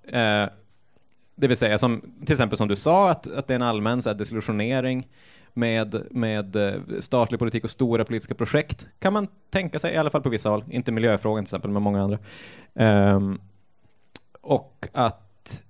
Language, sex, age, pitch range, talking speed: Swedish, male, 20-39, 105-130 Hz, 170 wpm